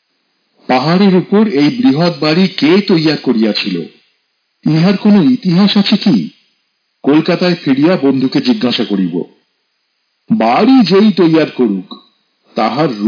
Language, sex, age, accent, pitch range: Bengali, male, 50-69, native, 135-200 Hz